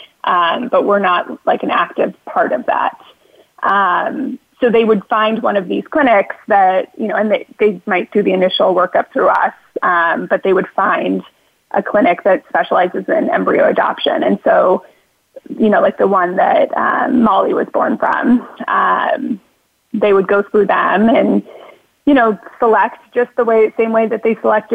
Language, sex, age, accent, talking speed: English, female, 20-39, American, 180 wpm